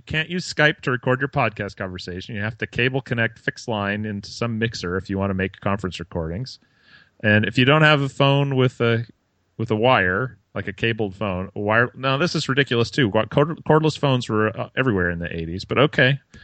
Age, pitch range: 30-49, 100-135 Hz